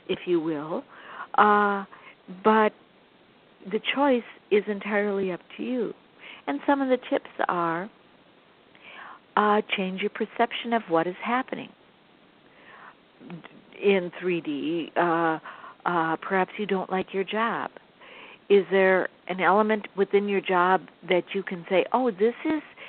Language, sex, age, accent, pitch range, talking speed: English, female, 60-79, American, 180-230 Hz, 130 wpm